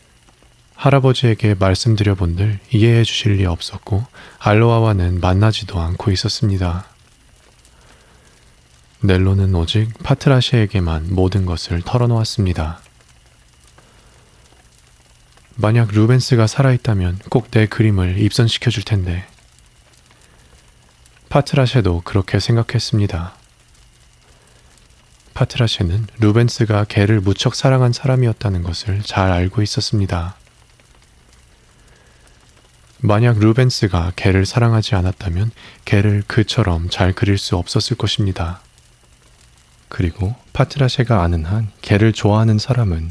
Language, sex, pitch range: Korean, male, 90-115 Hz